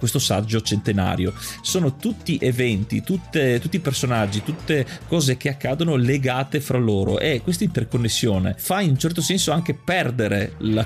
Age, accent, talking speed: 30-49, native, 150 wpm